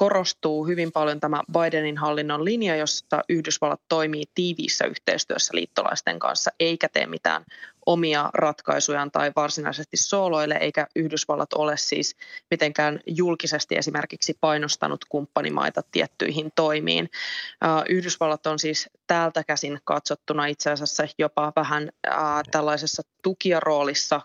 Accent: native